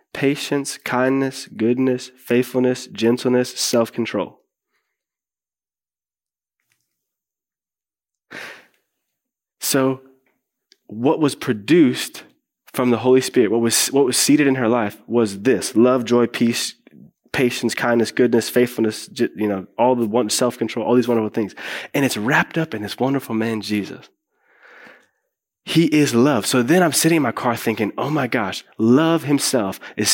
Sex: male